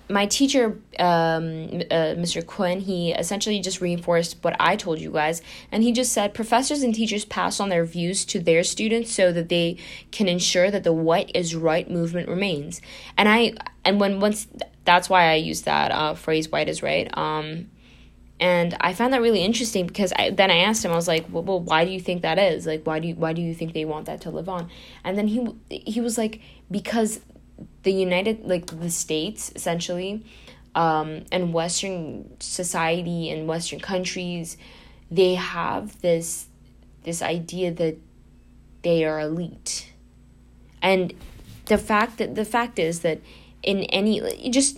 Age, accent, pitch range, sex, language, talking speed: 10-29, American, 165-200 Hz, female, English, 180 wpm